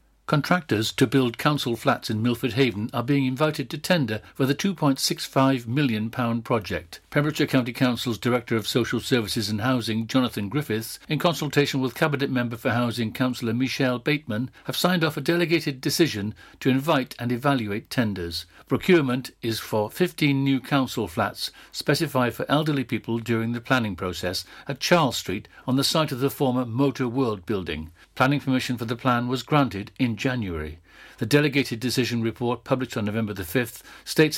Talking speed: 165 wpm